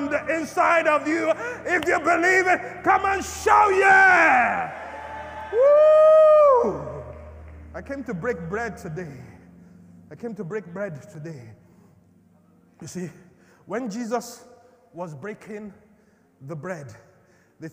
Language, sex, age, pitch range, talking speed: English, male, 30-49, 200-285 Hz, 110 wpm